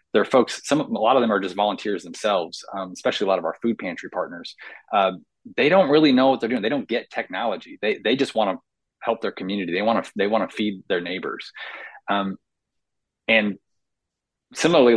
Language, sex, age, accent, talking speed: English, male, 30-49, American, 215 wpm